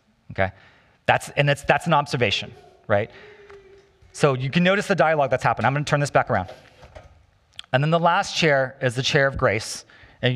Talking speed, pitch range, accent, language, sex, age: 195 wpm, 100-140 Hz, American, English, male, 30-49